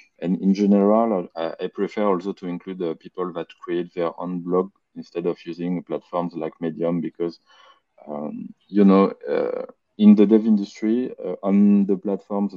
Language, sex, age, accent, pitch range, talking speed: English, male, 20-39, French, 85-100 Hz, 170 wpm